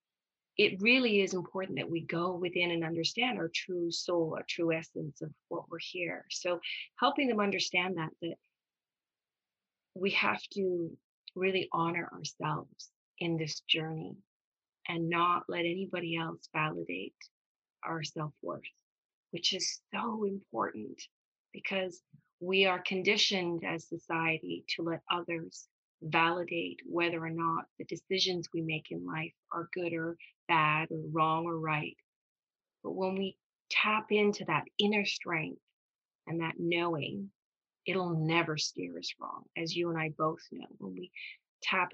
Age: 30-49